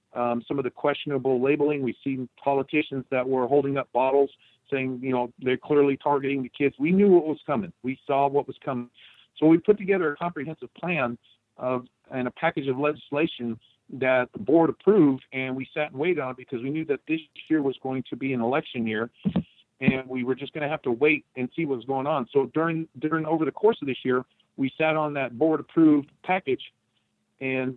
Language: English